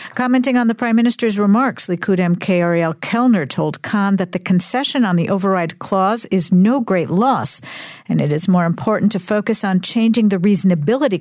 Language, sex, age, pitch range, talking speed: English, female, 50-69, 170-220 Hz, 185 wpm